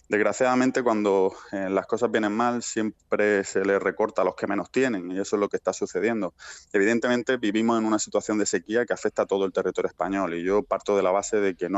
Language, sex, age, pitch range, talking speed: Spanish, male, 20-39, 100-110 Hz, 235 wpm